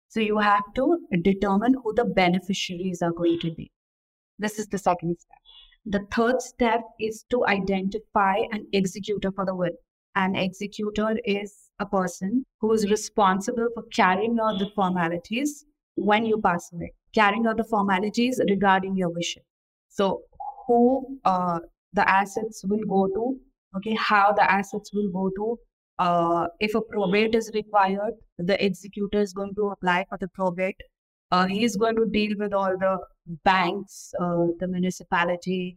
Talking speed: 160 wpm